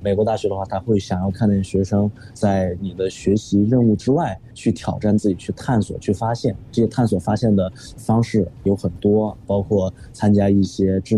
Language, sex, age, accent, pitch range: Chinese, male, 20-39, native, 95-115 Hz